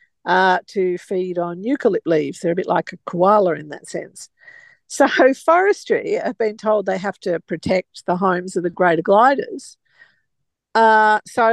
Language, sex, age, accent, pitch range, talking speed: English, female, 50-69, Australian, 190-260 Hz, 165 wpm